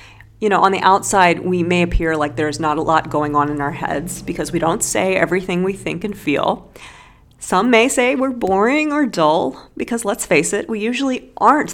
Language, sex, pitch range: English, female, 155-215 Hz